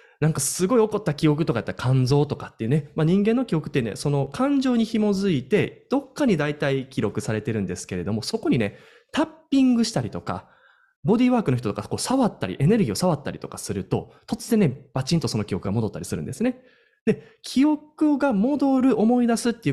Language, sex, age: Japanese, male, 20-39